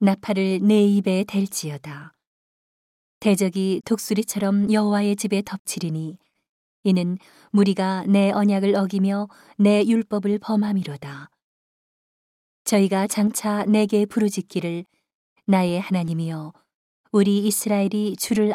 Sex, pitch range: female, 175-205 Hz